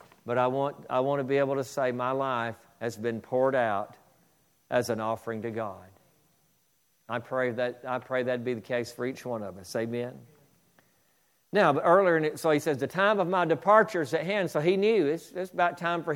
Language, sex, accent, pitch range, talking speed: English, male, American, 125-180 Hz, 215 wpm